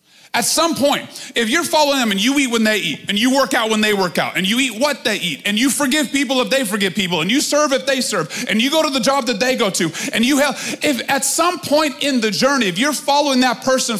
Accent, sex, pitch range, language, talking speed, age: American, male, 210-275 Hz, English, 285 wpm, 30-49